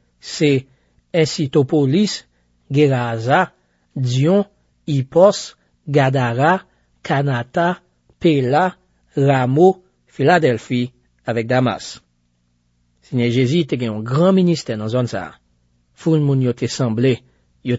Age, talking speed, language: 50-69, 100 wpm, French